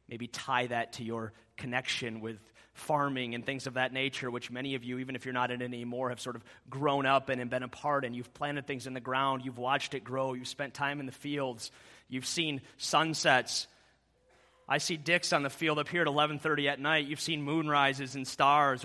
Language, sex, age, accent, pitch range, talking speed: English, male, 30-49, American, 125-190 Hz, 225 wpm